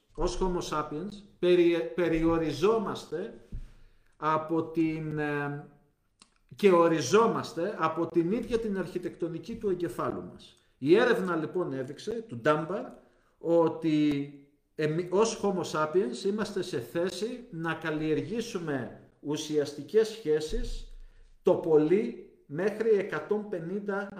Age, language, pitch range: 50-69, Greek, 155-200 Hz